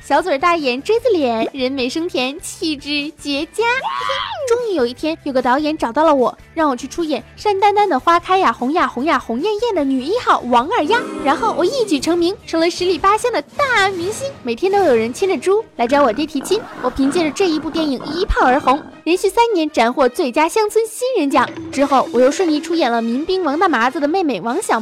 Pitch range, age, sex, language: 285-395 Hz, 10-29, female, Chinese